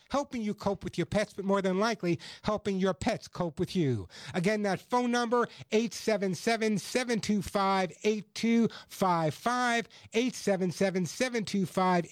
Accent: American